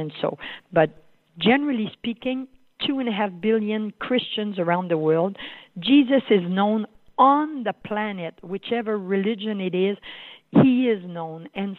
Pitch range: 180-240 Hz